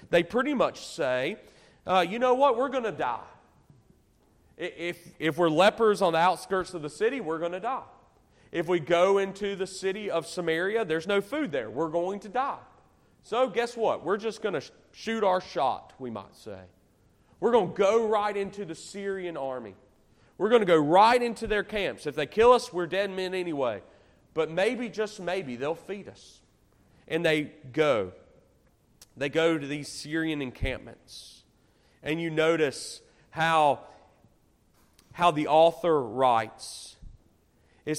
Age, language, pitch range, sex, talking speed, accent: 40-59, English, 155-215 Hz, male, 165 wpm, American